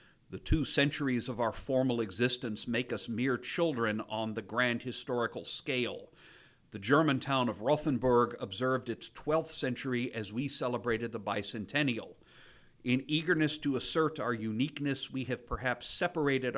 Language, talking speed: English, 145 wpm